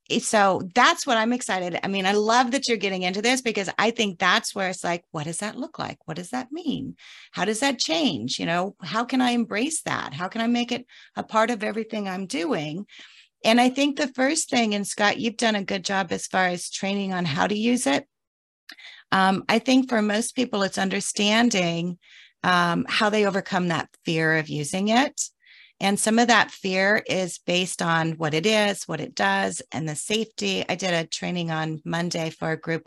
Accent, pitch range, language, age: American, 170-225 Hz, English, 40-59